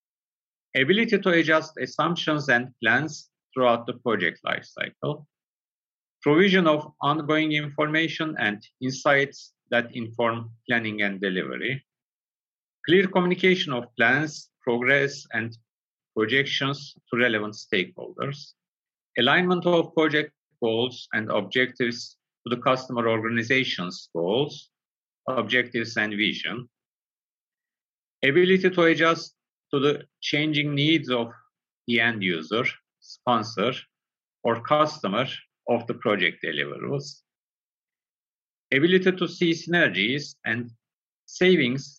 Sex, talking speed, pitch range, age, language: male, 100 wpm, 120-155 Hz, 50-69, Turkish